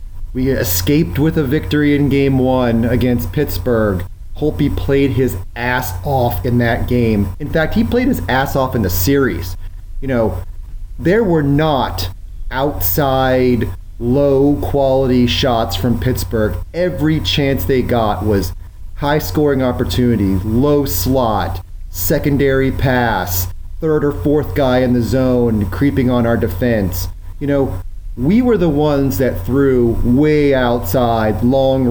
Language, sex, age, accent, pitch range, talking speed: English, male, 30-49, American, 95-145 Hz, 135 wpm